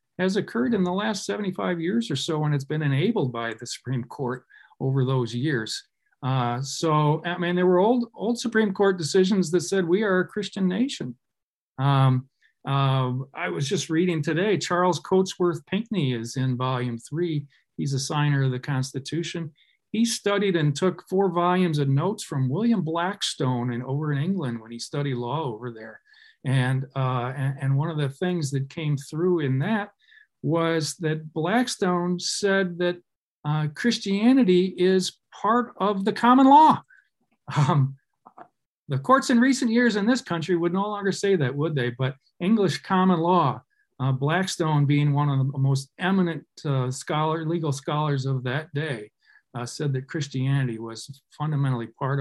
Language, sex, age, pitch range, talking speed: English, male, 40-59, 135-195 Hz, 170 wpm